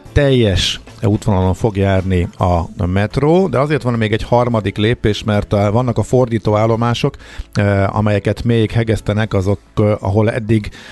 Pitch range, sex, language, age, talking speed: 95-110 Hz, male, Hungarian, 50-69, 150 wpm